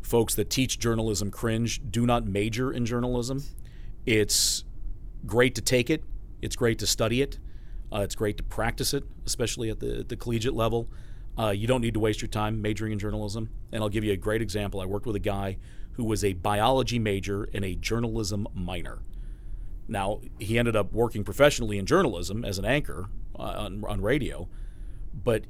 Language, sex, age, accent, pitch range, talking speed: English, male, 40-59, American, 100-115 Hz, 190 wpm